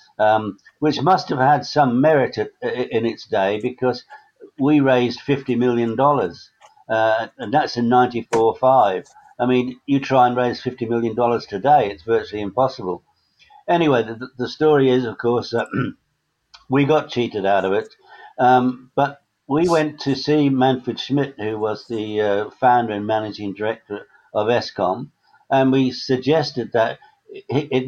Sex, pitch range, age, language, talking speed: male, 115-135 Hz, 60-79, English, 155 wpm